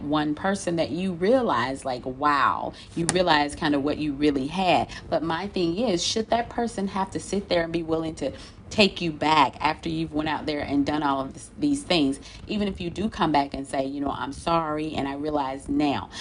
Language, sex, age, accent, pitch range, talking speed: English, female, 30-49, American, 140-175 Hz, 220 wpm